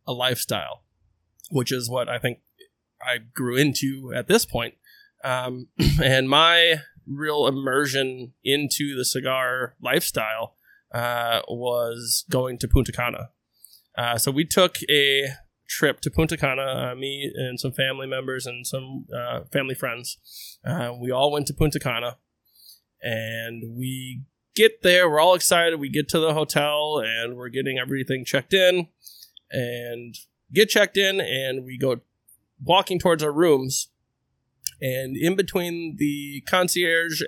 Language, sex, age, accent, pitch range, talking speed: English, male, 20-39, American, 125-155 Hz, 145 wpm